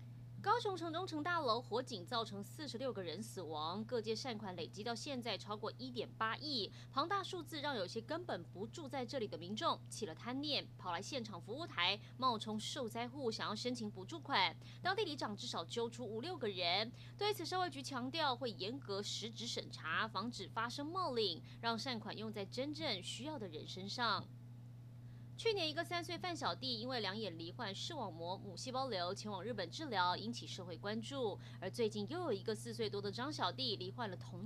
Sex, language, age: female, Chinese, 20-39